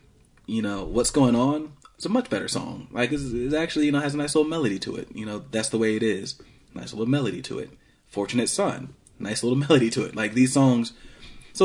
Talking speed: 230 wpm